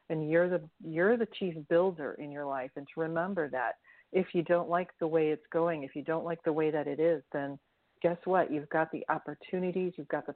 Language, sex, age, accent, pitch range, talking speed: English, female, 40-59, American, 155-175 Hz, 240 wpm